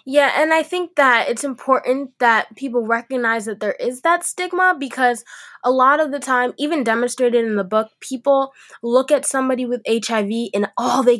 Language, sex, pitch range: English, female, 230-280 Hz